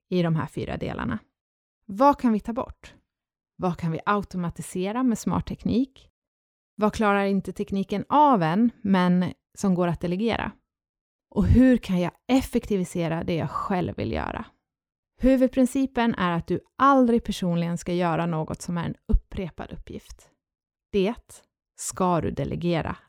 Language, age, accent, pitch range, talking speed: Swedish, 30-49, native, 170-230 Hz, 145 wpm